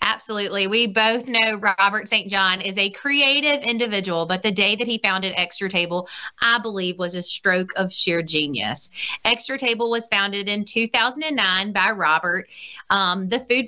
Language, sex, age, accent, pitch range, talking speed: English, female, 30-49, American, 190-235 Hz, 165 wpm